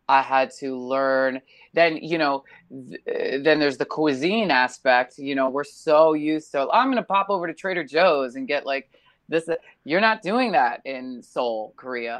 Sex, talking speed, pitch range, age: female, 185 wpm, 130-165 Hz, 20-39